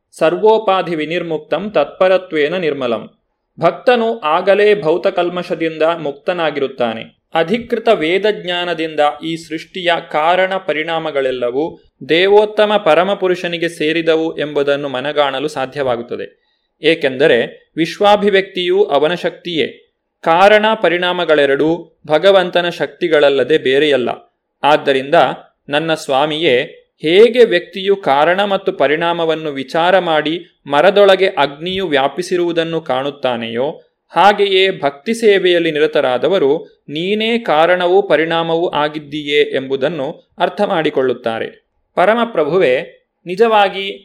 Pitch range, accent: 155-200 Hz, native